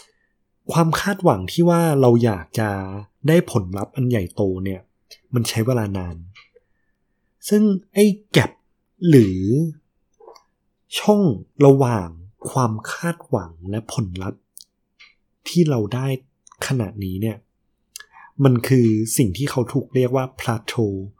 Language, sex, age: Thai, male, 20-39